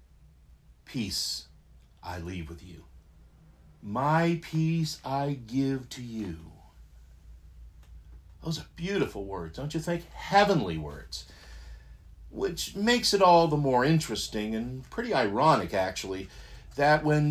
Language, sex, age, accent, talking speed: English, male, 50-69, American, 115 wpm